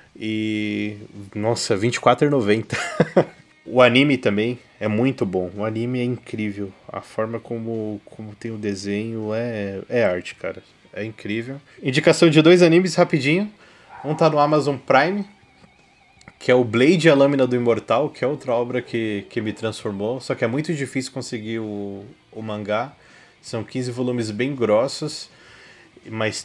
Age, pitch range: 20-39, 110-140 Hz